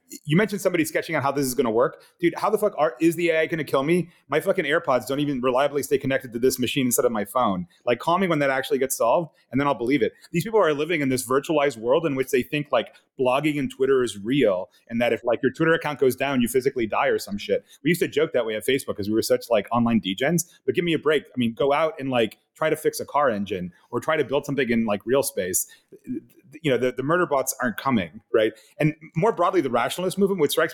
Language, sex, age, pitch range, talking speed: English, male, 30-49, 130-195 Hz, 270 wpm